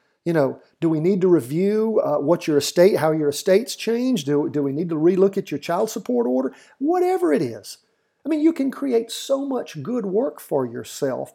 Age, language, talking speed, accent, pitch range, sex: 50-69, English, 210 wpm, American, 135-190 Hz, male